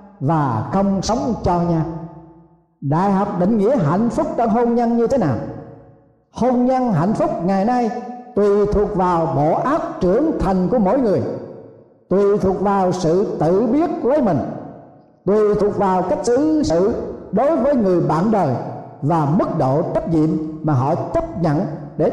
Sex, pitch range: male, 160-240 Hz